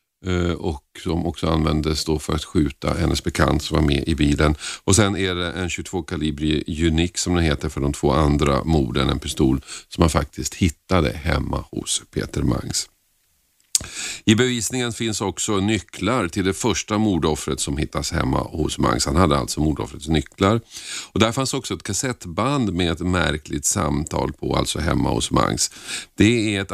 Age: 50-69